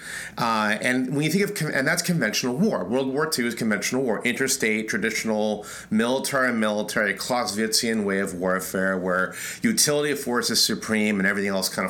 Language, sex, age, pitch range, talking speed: English, male, 30-49, 115-155 Hz, 165 wpm